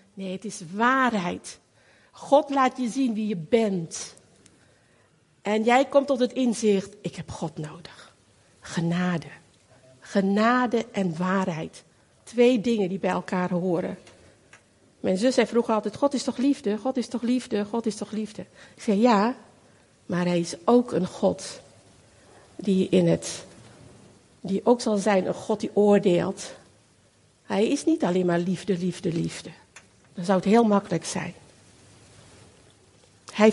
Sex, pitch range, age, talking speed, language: female, 170-230 Hz, 50-69, 145 wpm, Dutch